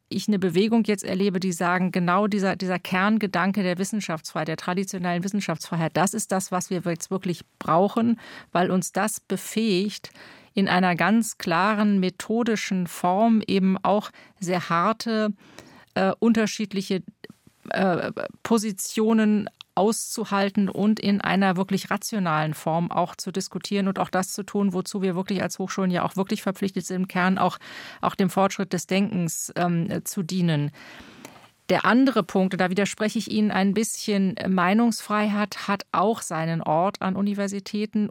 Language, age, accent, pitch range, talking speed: German, 40-59, German, 180-210 Hz, 150 wpm